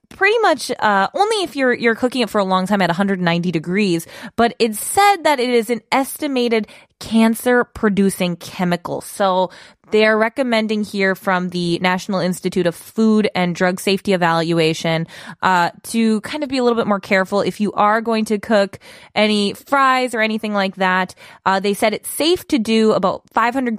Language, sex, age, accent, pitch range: Korean, female, 20-39, American, 185-240 Hz